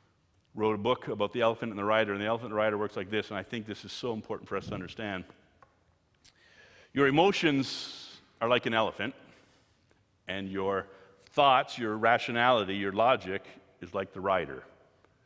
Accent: American